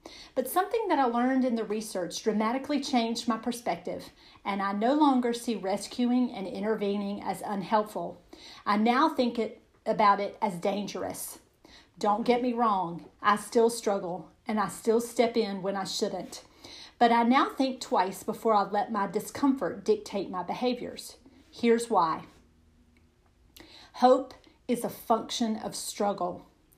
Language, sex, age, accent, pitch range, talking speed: English, female, 40-59, American, 200-240 Hz, 145 wpm